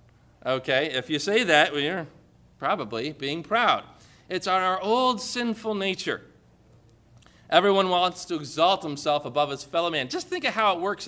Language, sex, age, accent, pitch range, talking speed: English, male, 40-59, American, 160-220 Hz, 160 wpm